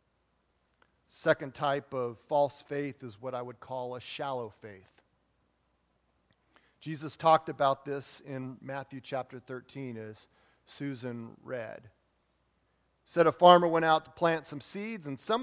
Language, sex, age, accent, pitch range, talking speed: English, male, 40-59, American, 125-180 Hz, 135 wpm